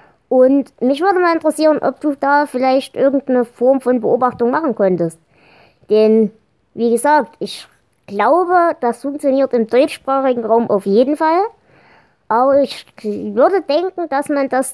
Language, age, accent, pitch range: German, 20-39, German, 215-275 Hz